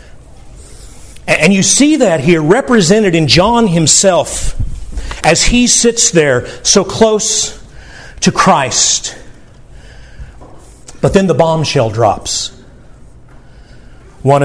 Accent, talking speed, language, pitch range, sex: American, 95 wpm, English, 140-180 Hz, male